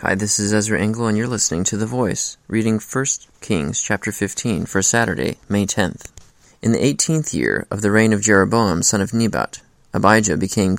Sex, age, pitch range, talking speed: male, 20-39, 100-115 Hz, 190 wpm